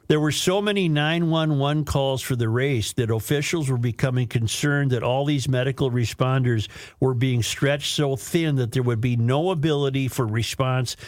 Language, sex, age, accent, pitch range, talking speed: English, male, 50-69, American, 105-135 Hz, 175 wpm